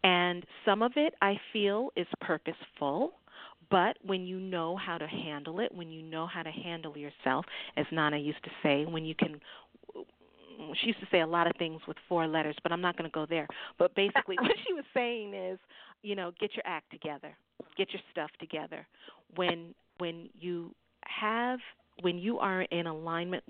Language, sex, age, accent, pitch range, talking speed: English, female, 40-59, American, 160-205 Hz, 190 wpm